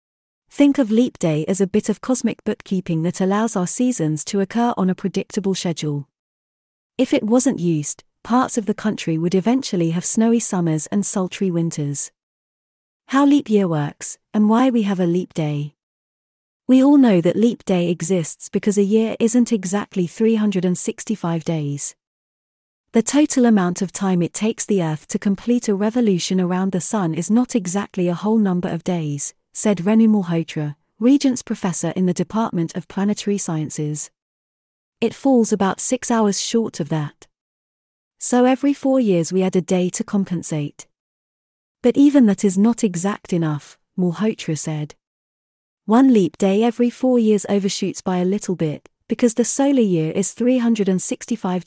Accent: British